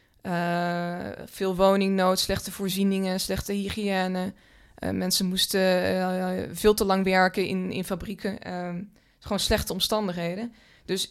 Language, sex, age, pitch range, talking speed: Dutch, female, 20-39, 185-210 Hz, 125 wpm